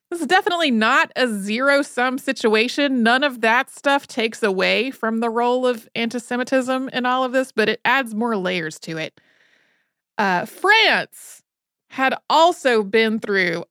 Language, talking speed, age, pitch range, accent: English, 160 wpm, 30-49, 205-255 Hz, American